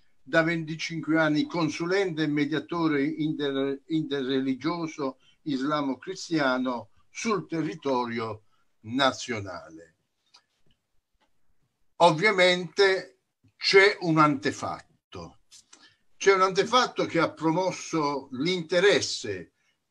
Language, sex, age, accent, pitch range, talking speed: Italian, male, 60-79, native, 130-165 Hz, 65 wpm